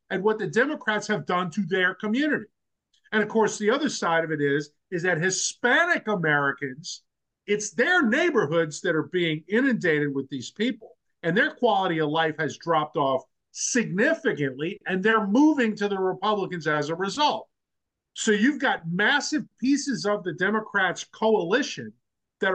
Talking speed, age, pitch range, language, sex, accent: 160 wpm, 50-69, 175-245 Hz, English, male, American